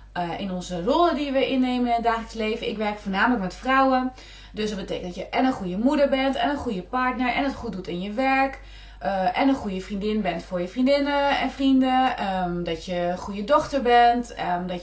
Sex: female